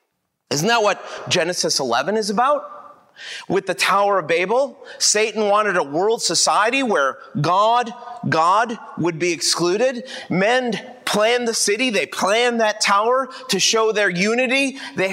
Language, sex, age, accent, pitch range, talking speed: English, male, 30-49, American, 205-270 Hz, 145 wpm